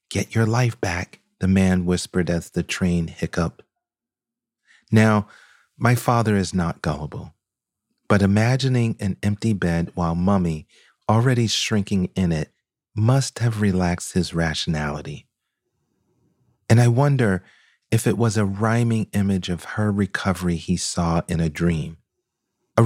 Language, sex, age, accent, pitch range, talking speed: English, male, 40-59, American, 90-110 Hz, 135 wpm